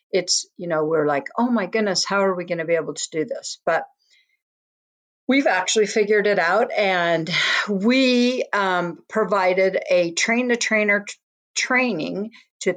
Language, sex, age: English, female, 50-69